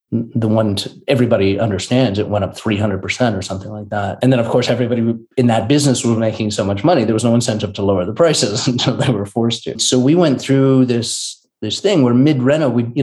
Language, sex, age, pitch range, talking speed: English, male, 30-49, 110-125 Hz, 235 wpm